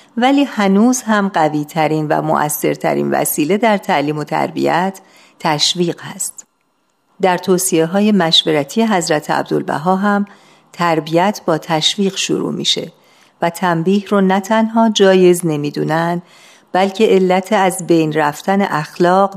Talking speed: 125 wpm